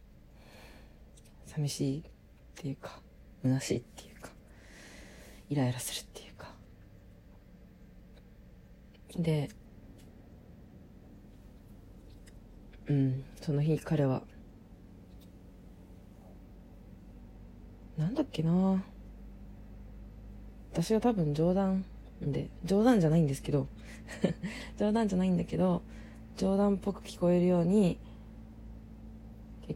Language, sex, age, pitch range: Japanese, female, 40-59, 100-155 Hz